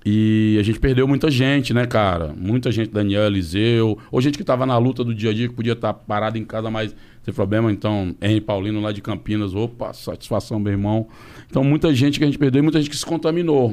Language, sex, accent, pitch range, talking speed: Portuguese, male, Brazilian, 100-120 Hz, 245 wpm